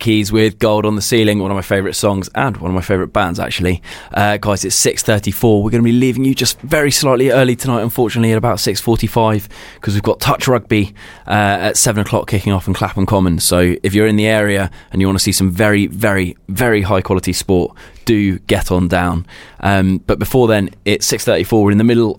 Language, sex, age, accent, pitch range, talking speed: English, male, 20-39, British, 95-115 Hz, 225 wpm